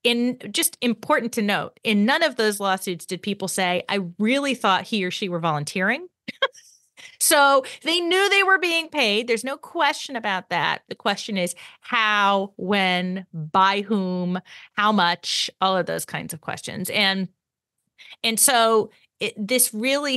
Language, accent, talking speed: English, American, 160 wpm